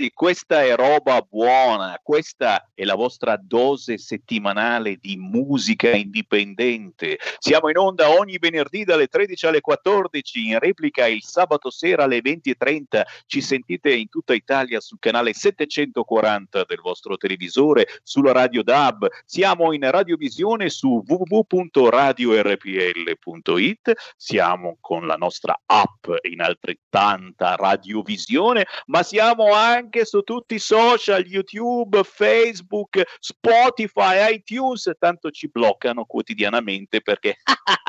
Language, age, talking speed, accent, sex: Italian, 50-69, 115 wpm, native, male